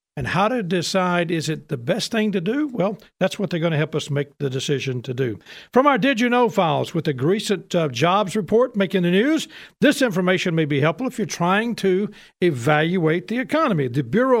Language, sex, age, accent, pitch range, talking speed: English, male, 50-69, American, 160-215 Hz, 220 wpm